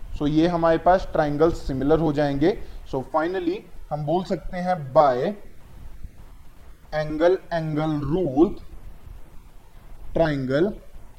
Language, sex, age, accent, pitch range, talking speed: Hindi, male, 20-39, native, 140-180 Hz, 105 wpm